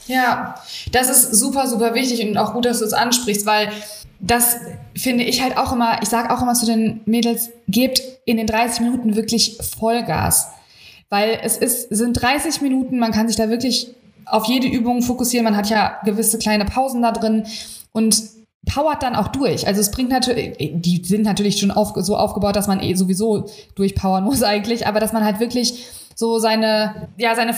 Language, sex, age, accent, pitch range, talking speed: German, female, 20-39, German, 200-245 Hz, 195 wpm